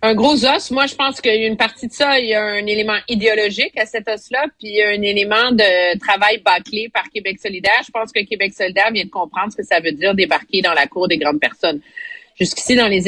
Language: French